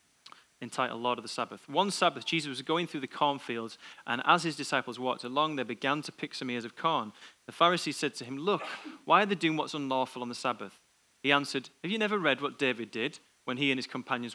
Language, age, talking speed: English, 30-49, 235 wpm